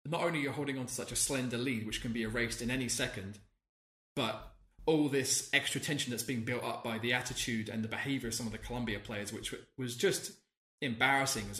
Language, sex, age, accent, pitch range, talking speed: English, male, 20-39, British, 115-140 Hz, 220 wpm